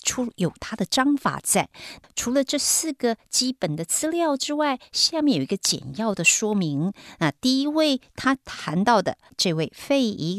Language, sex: Chinese, female